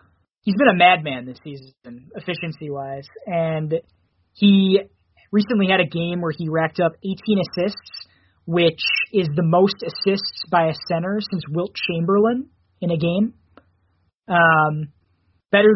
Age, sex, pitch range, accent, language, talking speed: 20-39, male, 150-195 Hz, American, English, 135 wpm